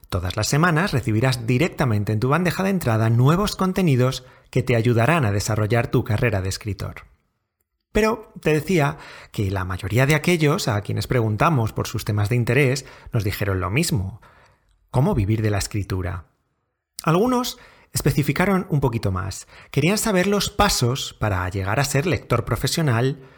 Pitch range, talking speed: 110-155 Hz, 155 wpm